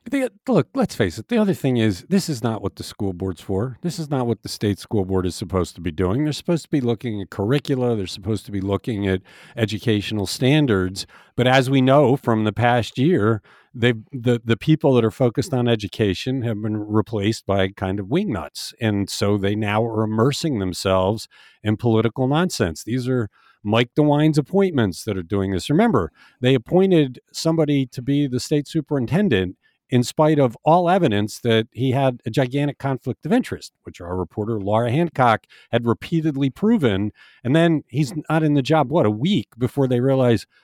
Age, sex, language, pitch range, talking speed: 50-69, male, English, 105-150 Hz, 195 wpm